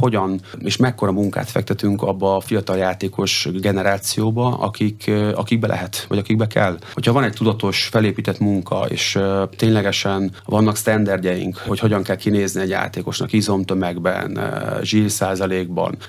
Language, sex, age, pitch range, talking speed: Hungarian, male, 30-49, 95-110 Hz, 125 wpm